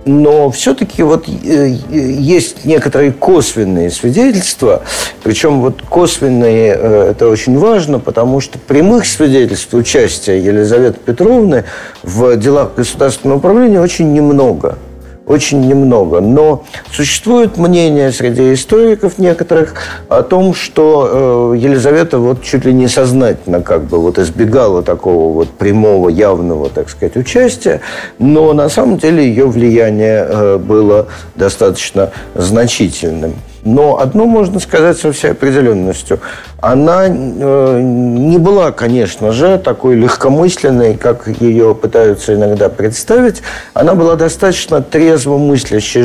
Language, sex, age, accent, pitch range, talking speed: Russian, male, 50-69, native, 115-165 Hz, 105 wpm